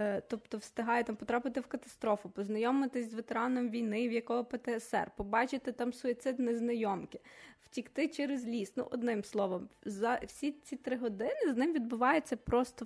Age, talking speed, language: 20-39, 150 wpm, Ukrainian